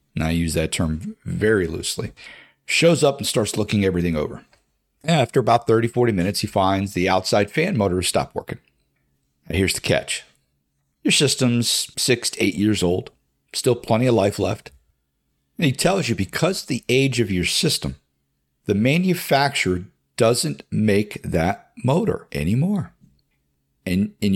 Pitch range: 90-125 Hz